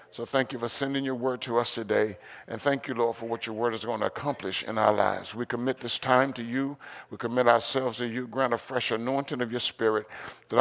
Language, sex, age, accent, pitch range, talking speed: English, male, 50-69, American, 105-135 Hz, 250 wpm